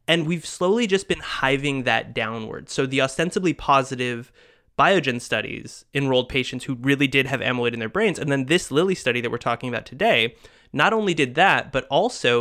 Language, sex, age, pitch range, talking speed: English, male, 20-39, 120-150 Hz, 195 wpm